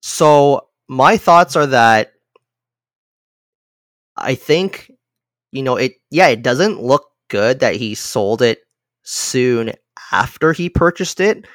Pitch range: 120-155 Hz